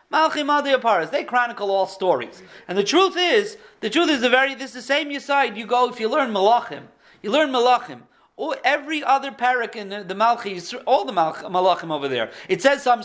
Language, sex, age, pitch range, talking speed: English, male, 40-59, 200-280 Hz, 195 wpm